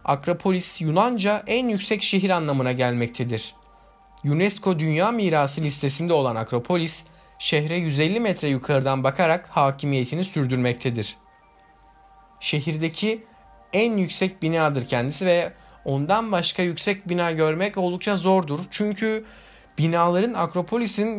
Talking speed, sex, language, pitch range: 100 wpm, male, Turkish, 140-195 Hz